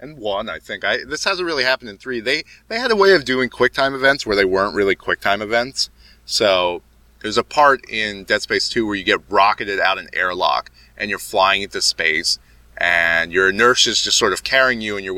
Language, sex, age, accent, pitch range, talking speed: English, male, 30-49, American, 85-135 Hz, 225 wpm